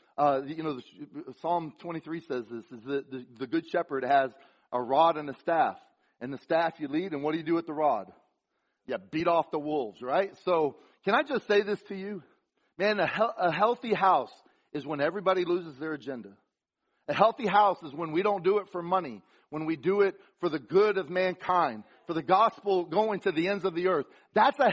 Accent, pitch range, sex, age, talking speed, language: American, 160-210 Hz, male, 40-59, 220 wpm, English